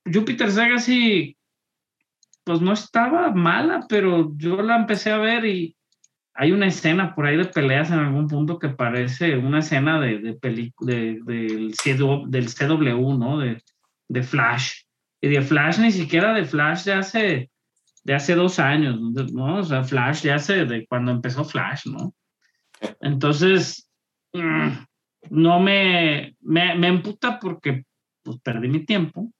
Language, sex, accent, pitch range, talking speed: Spanish, male, Mexican, 125-175 Hz, 155 wpm